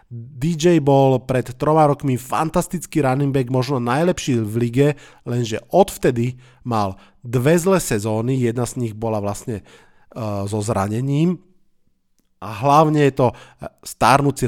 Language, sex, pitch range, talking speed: Slovak, male, 115-145 Hz, 130 wpm